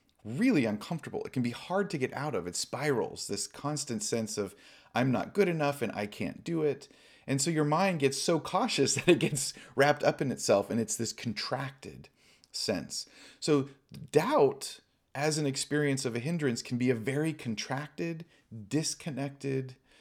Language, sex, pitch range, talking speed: English, male, 110-145 Hz, 175 wpm